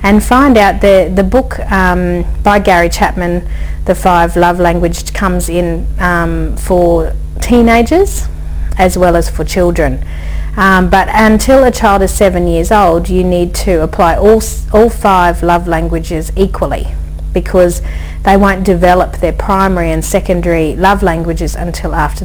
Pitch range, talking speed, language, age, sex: 170-195 Hz, 150 wpm, English, 40-59, female